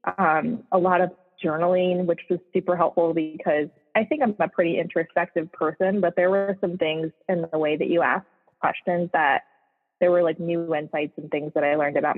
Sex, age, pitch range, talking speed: female, 20-39, 155-185 Hz, 200 wpm